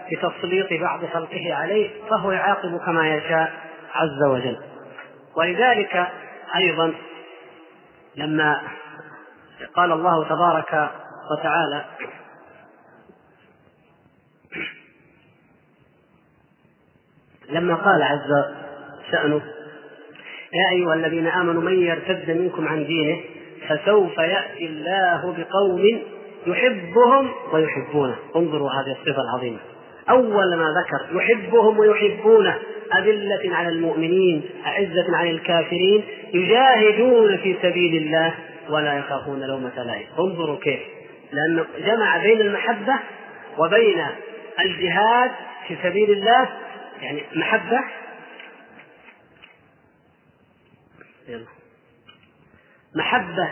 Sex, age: male, 30-49